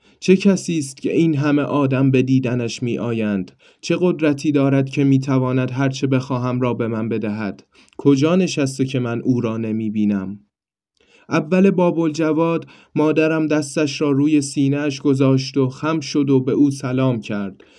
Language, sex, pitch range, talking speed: Persian, male, 120-145 Hz, 160 wpm